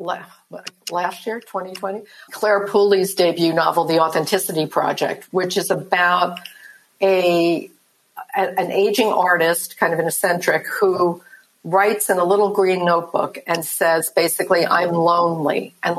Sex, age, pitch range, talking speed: female, 60-79, 170-200 Hz, 130 wpm